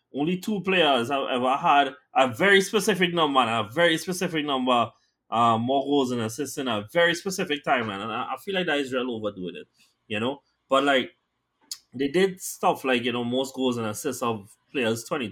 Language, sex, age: English, male, 20-39